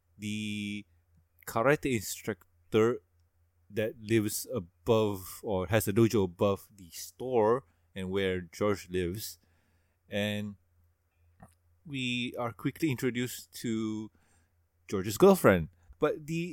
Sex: male